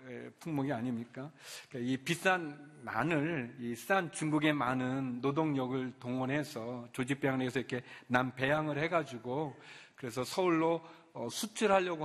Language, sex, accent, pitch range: Korean, male, native, 130-170 Hz